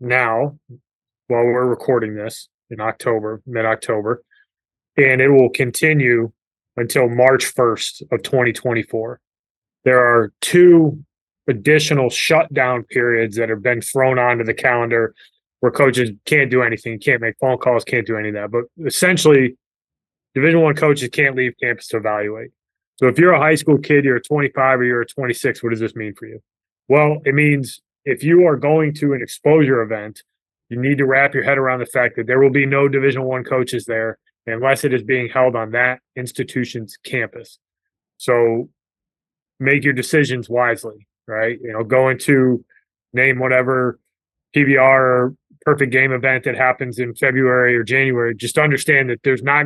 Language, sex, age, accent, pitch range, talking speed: English, male, 20-39, American, 120-140 Hz, 165 wpm